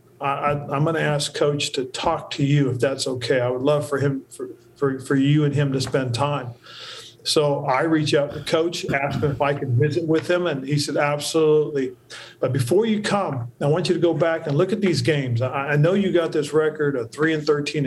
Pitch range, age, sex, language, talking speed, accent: 130-155 Hz, 40-59, male, English, 240 wpm, American